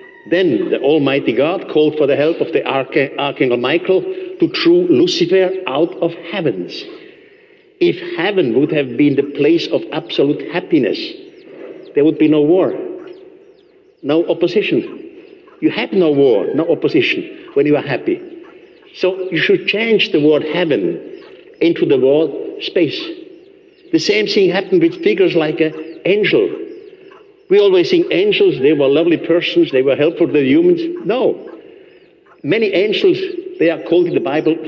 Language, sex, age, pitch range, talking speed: English, male, 60-79, 335-395 Hz, 155 wpm